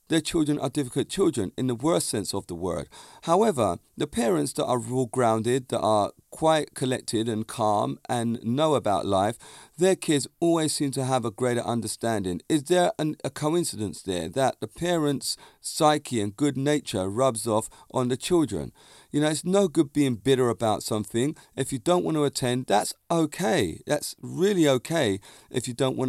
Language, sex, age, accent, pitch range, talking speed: English, male, 40-59, British, 110-150 Hz, 185 wpm